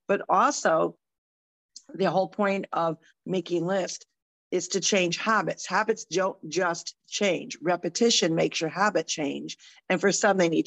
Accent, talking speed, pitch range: American, 145 wpm, 175-215 Hz